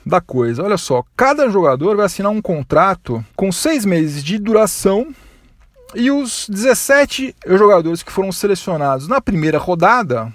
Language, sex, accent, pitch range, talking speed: Portuguese, male, Brazilian, 155-215 Hz, 145 wpm